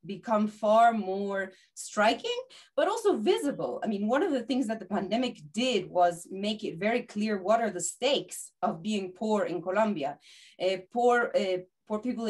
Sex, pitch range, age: female, 180-235 Hz, 20-39